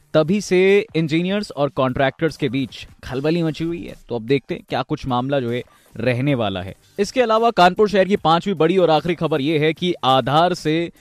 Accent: native